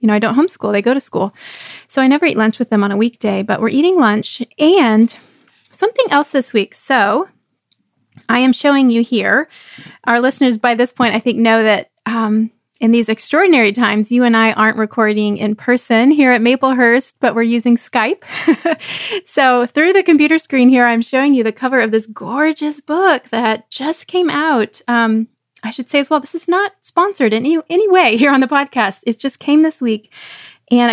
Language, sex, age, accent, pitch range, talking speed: English, female, 20-39, American, 225-285 Hz, 200 wpm